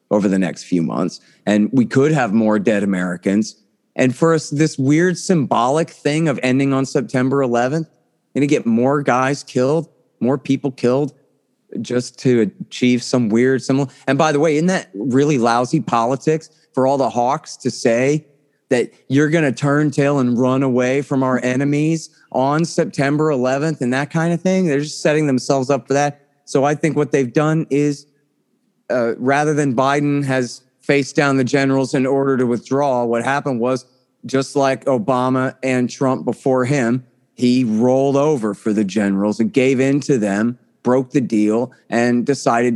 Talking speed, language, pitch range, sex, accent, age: 175 wpm, English, 125-150 Hz, male, American, 30-49